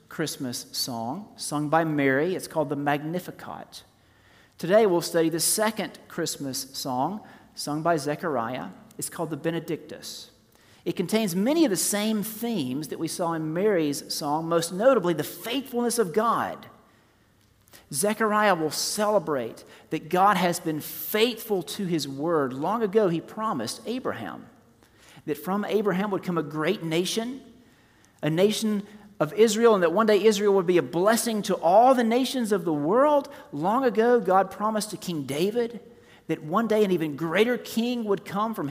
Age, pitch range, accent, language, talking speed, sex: 40-59, 155-220 Hz, American, English, 160 wpm, male